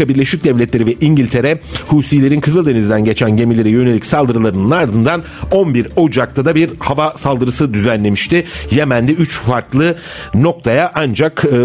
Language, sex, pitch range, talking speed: Turkish, male, 110-155 Hz, 125 wpm